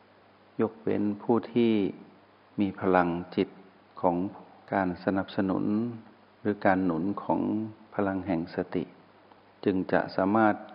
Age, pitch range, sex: 60-79, 90-105 Hz, male